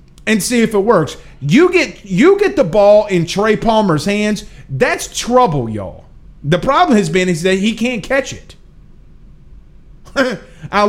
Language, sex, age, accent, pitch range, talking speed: English, male, 30-49, American, 150-200 Hz, 160 wpm